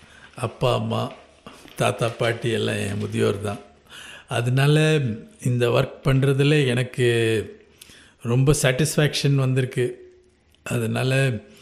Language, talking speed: English, 90 wpm